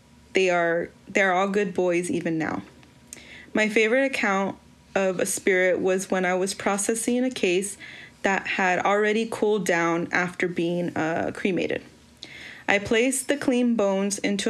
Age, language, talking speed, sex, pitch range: 20-39, English, 150 wpm, female, 190-225 Hz